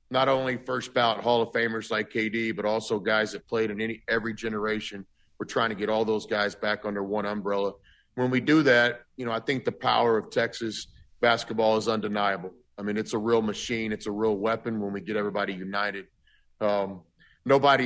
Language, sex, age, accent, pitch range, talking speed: English, male, 40-59, American, 100-115 Hz, 205 wpm